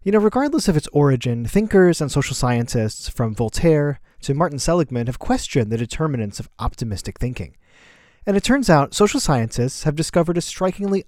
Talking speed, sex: 175 wpm, male